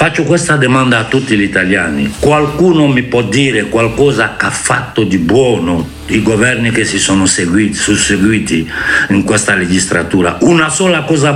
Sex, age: male, 60-79